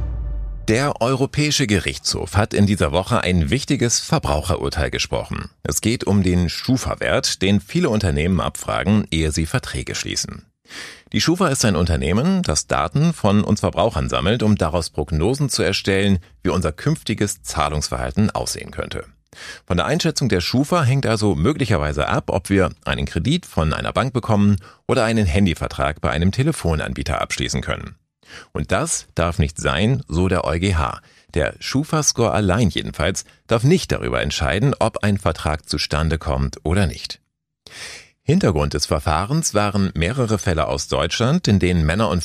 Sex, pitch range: male, 80-115 Hz